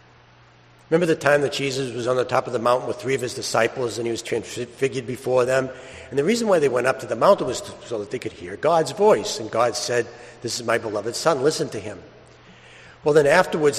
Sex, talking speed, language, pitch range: male, 245 wpm, English, 115-140 Hz